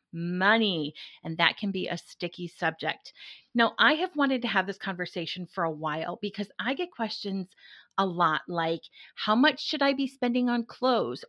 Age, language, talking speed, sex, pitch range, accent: 30-49, English, 180 wpm, female, 180-245 Hz, American